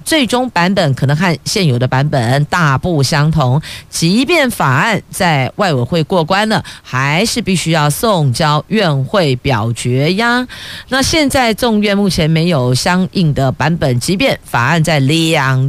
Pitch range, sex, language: 140-200 Hz, female, Chinese